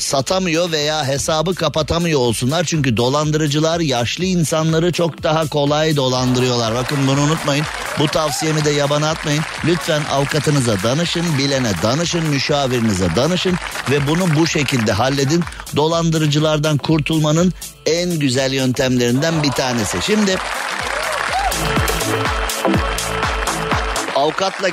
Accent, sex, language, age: native, male, Turkish, 50-69